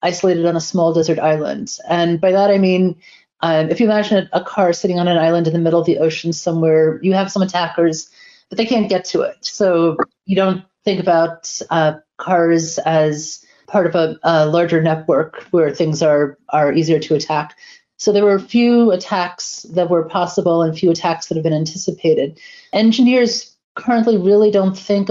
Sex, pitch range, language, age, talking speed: female, 165-195 Hz, English, 30-49, 190 wpm